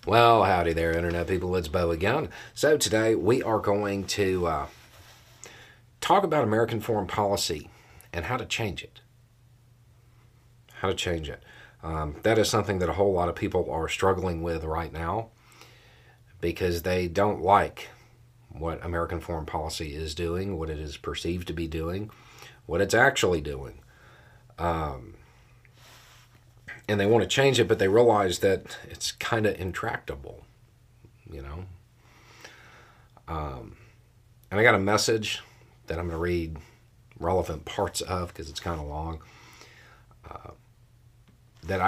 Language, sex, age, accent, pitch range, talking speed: English, male, 40-59, American, 85-120 Hz, 145 wpm